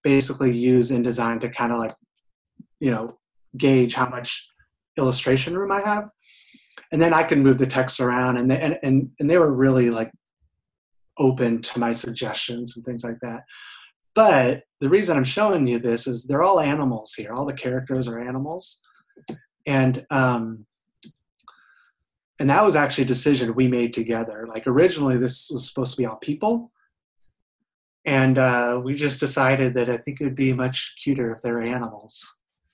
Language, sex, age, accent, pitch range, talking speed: English, male, 30-49, American, 120-135 Hz, 170 wpm